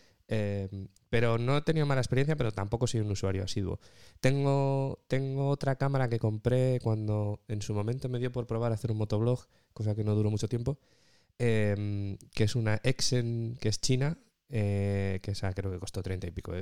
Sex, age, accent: male, 20-39, Spanish